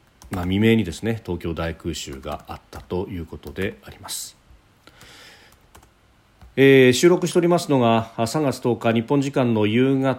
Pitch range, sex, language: 105-145 Hz, male, Japanese